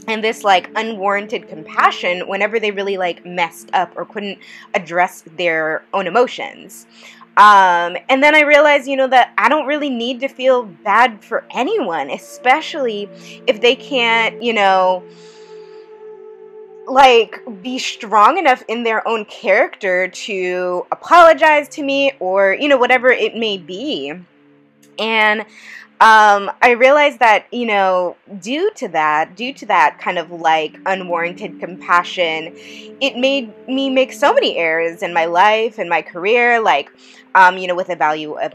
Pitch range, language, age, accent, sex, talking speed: 180-255 Hz, English, 20-39, American, female, 155 wpm